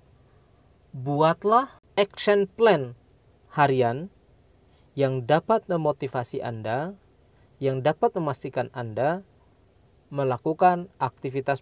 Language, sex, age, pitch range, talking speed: Indonesian, male, 40-59, 120-155 Hz, 70 wpm